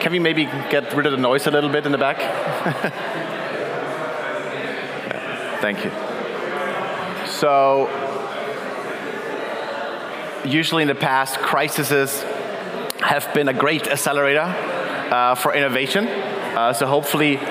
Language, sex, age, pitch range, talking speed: English, male, 30-49, 130-155 Hz, 115 wpm